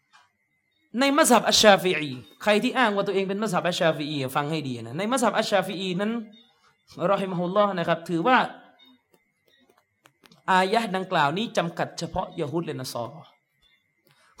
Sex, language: male, Thai